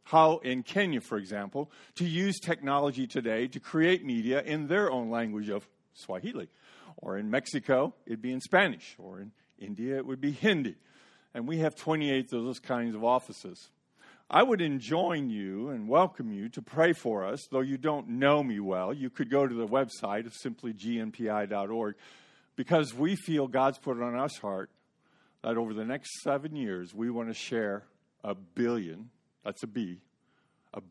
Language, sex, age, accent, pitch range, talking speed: English, male, 50-69, American, 110-140 Hz, 180 wpm